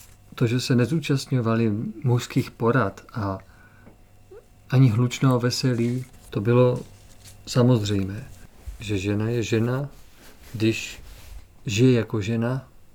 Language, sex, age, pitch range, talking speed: Czech, male, 50-69, 110-135 Hz, 95 wpm